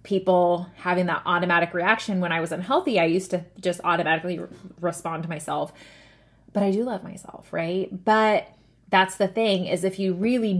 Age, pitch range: 20-39, 175-210 Hz